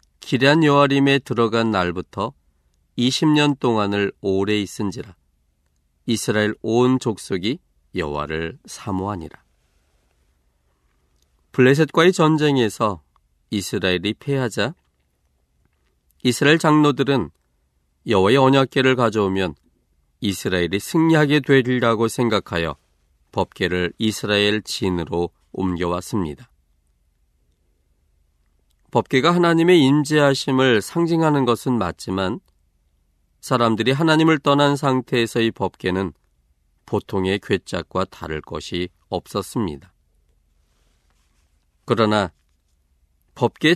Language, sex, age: Korean, male, 40-59